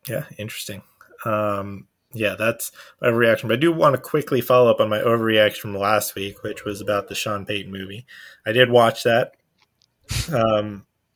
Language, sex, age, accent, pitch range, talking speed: English, male, 20-39, American, 105-130 Hz, 175 wpm